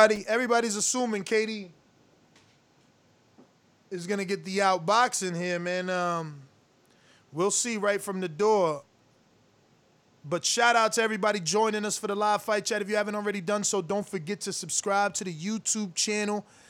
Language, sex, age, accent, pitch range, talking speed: English, male, 20-39, American, 165-215 Hz, 160 wpm